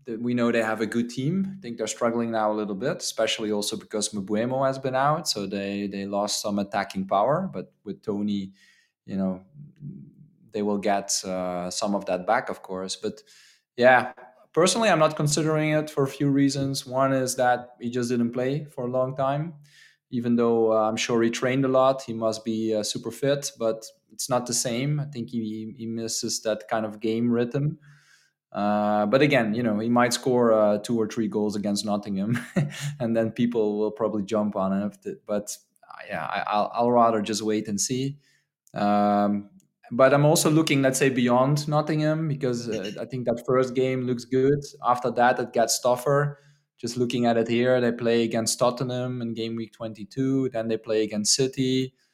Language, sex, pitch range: English, male, 110-135 Hz